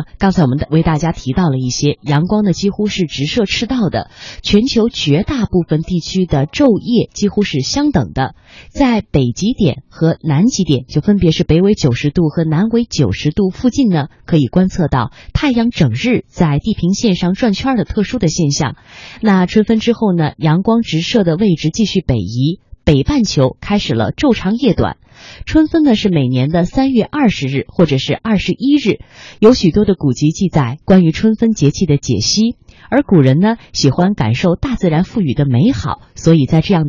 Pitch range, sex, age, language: 145-225 Hz, female, 20-39, Chinese